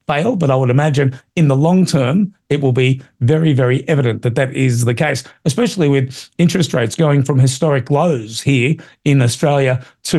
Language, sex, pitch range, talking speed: English, male, 130-160 Hz, 190 wpm